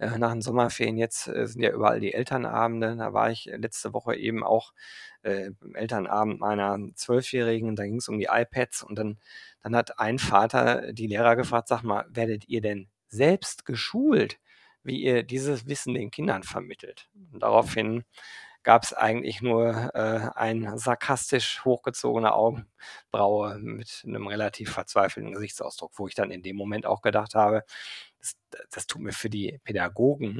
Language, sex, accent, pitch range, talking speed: German, male, German, 105-135 Hz, 160 wpm